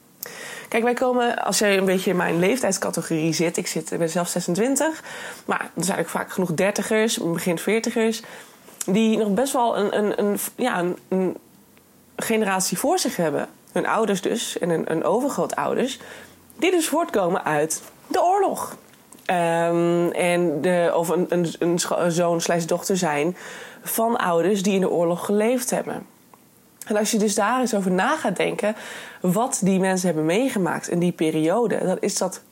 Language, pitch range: Dutch, 180-240 Hz